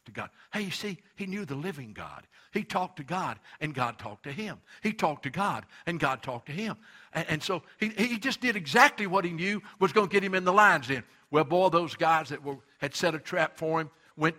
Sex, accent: male, American